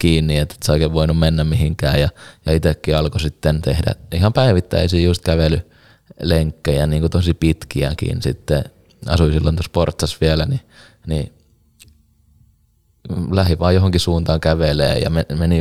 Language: Finnish